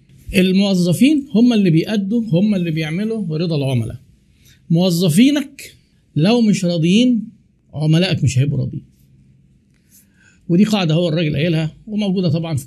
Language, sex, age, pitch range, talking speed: Arabic, male, 50-69, 145-190 Hz, 120 wpm